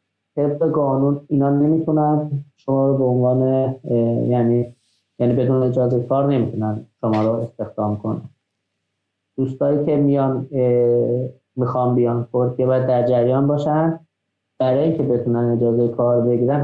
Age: 30-49